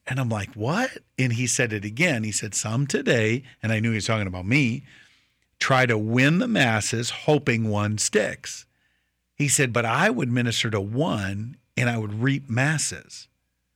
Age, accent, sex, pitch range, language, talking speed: 50-69, American, male, 105-125 Hz, English, 185 wpm